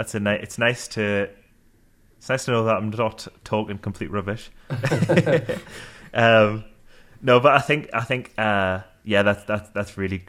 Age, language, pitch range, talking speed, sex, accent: 20-39, English, 95-110 Hz, 170 wpm, male, British